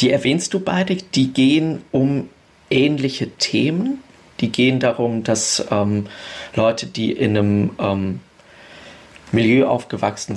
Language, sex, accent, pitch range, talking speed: German, male, German, 110-135 Hz, 120 wpm